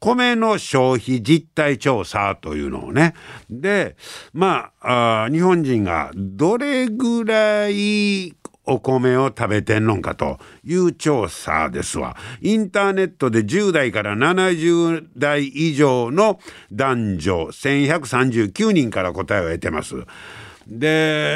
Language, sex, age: Japanese, male, 60-79